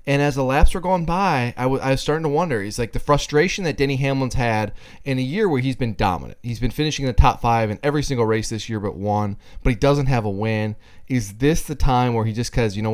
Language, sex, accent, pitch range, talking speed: English, male, American, 110-135 Hz, 280 wpm